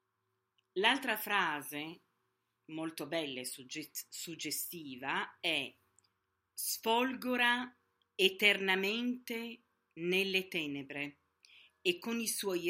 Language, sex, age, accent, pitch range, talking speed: Italian, female, 40-59, native, 140-195 Hz, 70 wpm